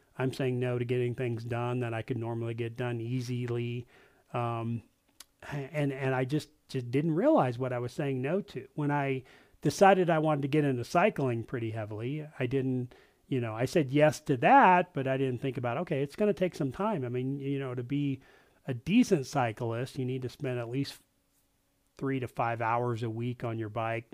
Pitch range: 120-150 Hz